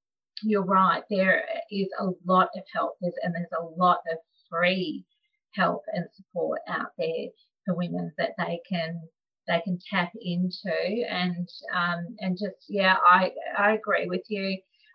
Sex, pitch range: female, 180-220 Hz